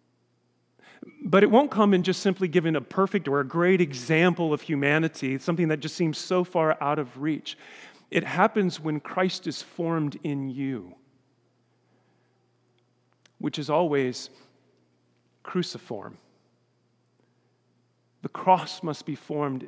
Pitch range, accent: 150-195 Hz, American